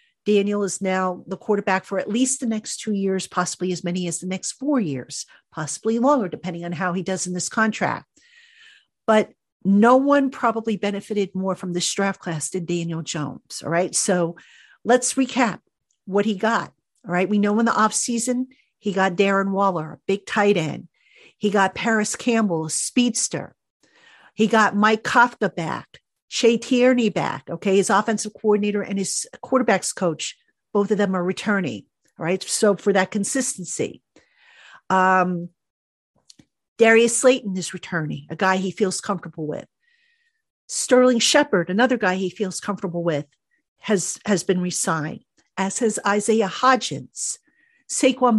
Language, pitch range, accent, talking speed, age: English, 185-235 Hz, American, 155 wpm, 50-69